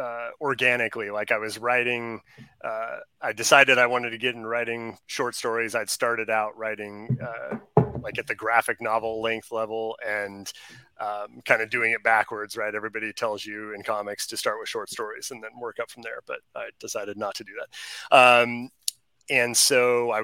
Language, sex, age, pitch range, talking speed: English, male, 30-49, 110-125 Hz, 190 wpm